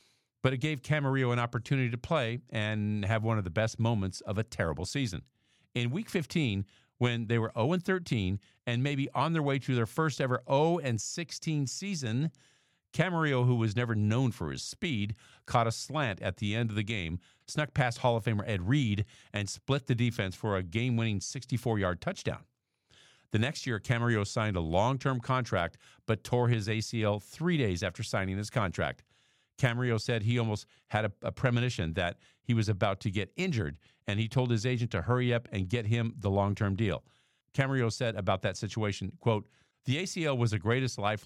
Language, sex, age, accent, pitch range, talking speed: English, male, 50-69, American, 105-130 Hz, 190 wpm